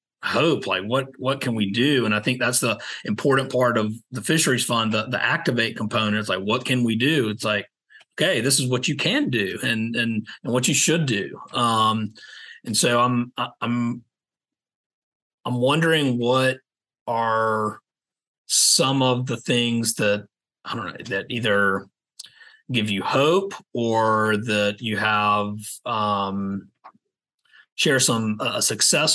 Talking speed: 155 wpm